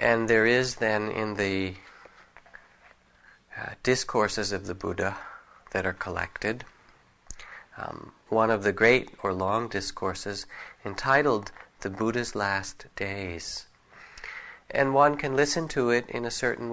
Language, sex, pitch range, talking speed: English, male, 95-115 Hz, 130 wpm